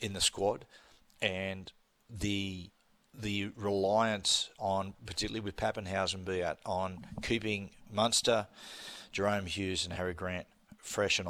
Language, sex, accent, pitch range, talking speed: English, male, Australian, 95-110 Hz, 120 wpm